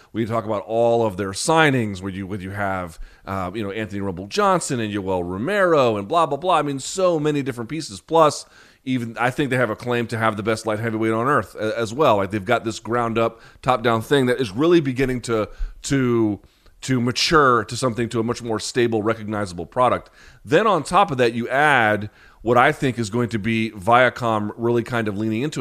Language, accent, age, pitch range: English, American, 30-49, 105-130 Hz